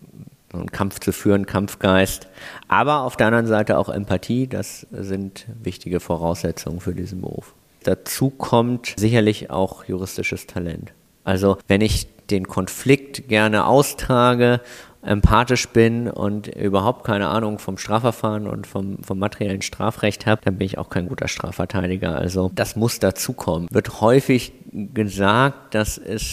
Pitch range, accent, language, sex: 95-115 Hz, German, German, male